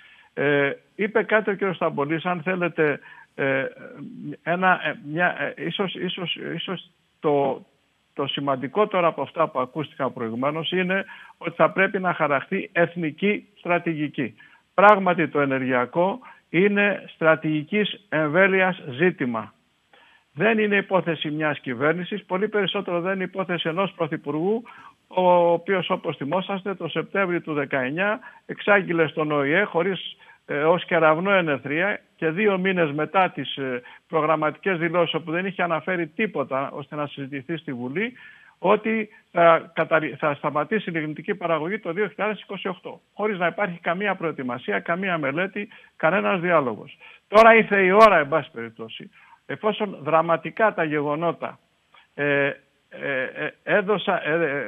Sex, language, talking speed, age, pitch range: male, Greek, 130 wpm, 60-79, 155-195 Hz